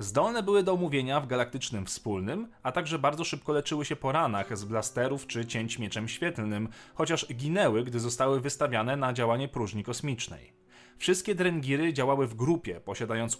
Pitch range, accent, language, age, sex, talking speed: 115-160 Hz, native, Polish, 30-49, male, 160 wpm